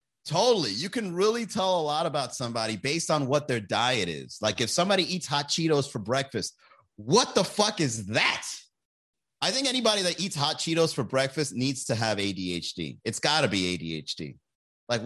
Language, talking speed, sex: English, 185 wpm, male